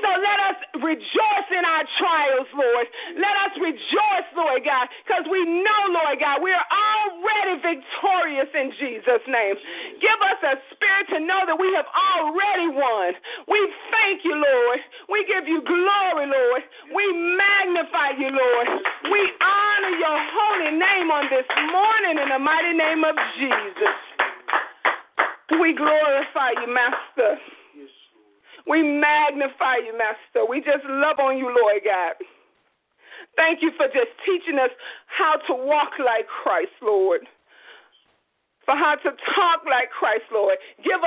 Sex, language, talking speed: female, English, 140 wpm